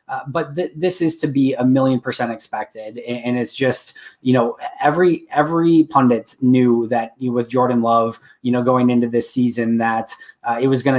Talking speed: 210 wpm